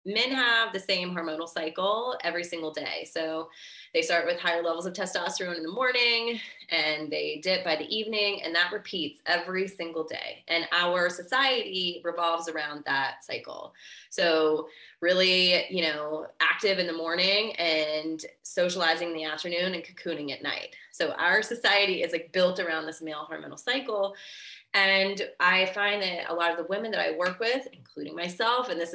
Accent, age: American, 20-39